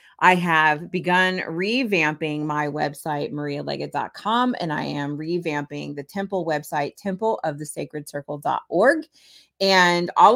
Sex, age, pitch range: female, 30-49, 150-180 Hz